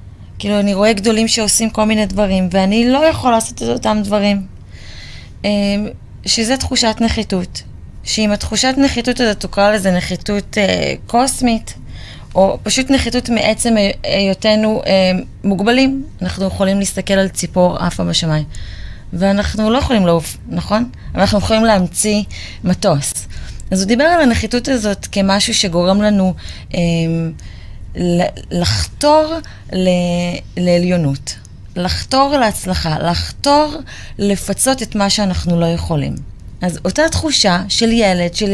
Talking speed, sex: 120 wpm, female